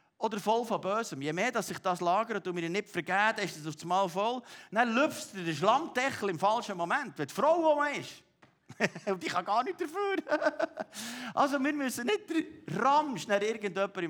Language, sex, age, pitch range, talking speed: German, male, 50-69, 170-265 Hz, 195 wpm